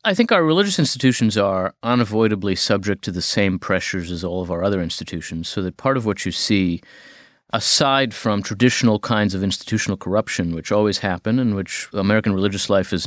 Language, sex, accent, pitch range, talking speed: English, male, American, 95-115 Hz, 190 wpm